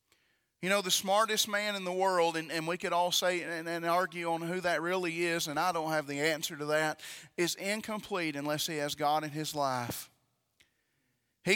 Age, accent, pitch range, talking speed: 40-59, American, 155-200 Hz, 210 wpm